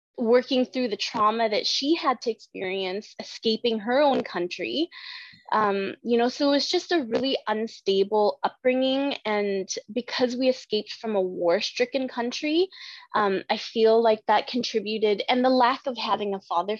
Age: 20-39